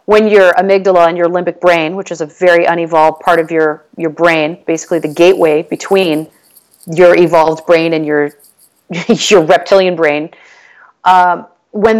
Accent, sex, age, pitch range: American, female, 40-59, 170-210 Hz